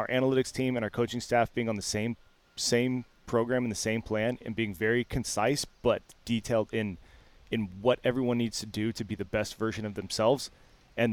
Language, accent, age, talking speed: English, American, 20-39, 205 wpm